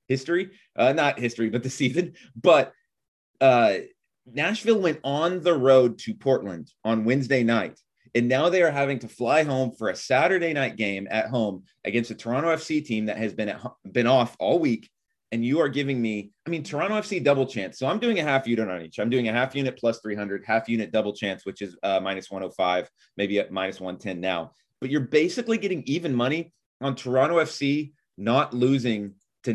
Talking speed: 205 wpm